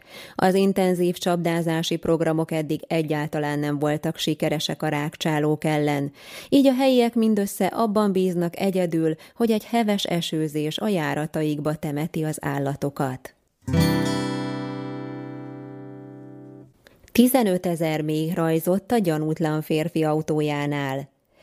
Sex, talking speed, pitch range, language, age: female, 95 wpm, 150-185 Hz, Hungarian, 20-39